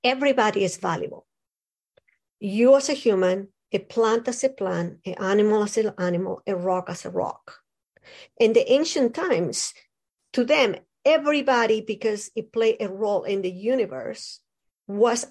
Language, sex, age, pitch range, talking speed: English, female, 50-69, 195-255 Hz, 150 wpm